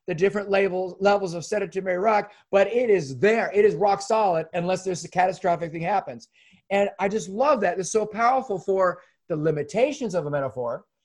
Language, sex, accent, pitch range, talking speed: English, male, American, 185-225 Hz, 185 wpm